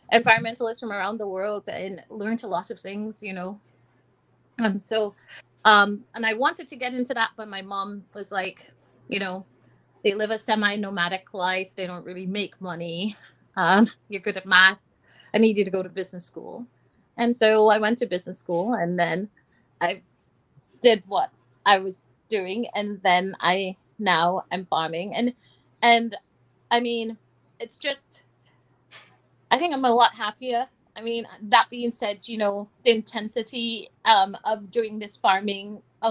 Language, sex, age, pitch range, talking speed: English, female, 30-49, 190-235 Hz, 170 wpm